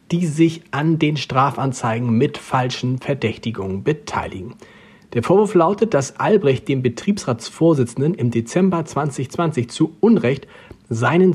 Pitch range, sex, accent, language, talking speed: 125-175 Hz, male, German, German, 115 wpm